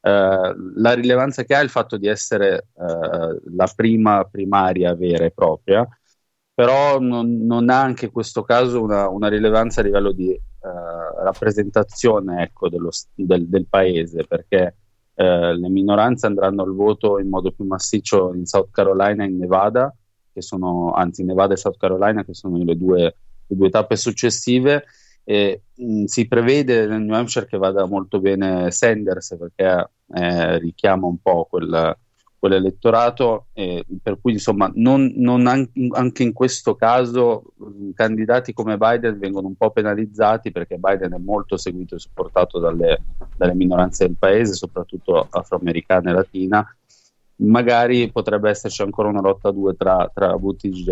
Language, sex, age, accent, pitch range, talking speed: Italian, male, 30-49, native, 95-120 Hz, 155 wpm